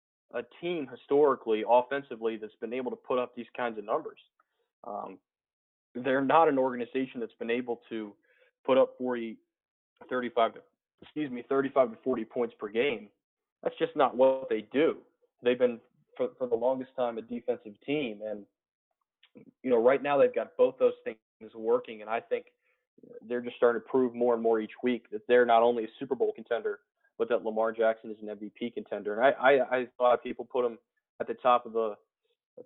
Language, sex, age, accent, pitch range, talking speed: English, male, 20-39, American, 110-145 Hz, 190 wpm